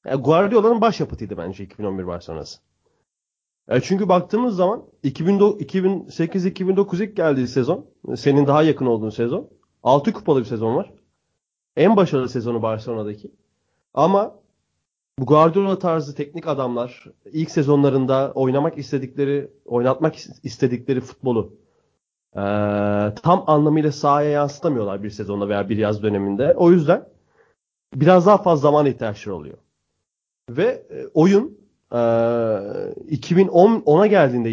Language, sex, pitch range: Turkish, male, 120-175 Hz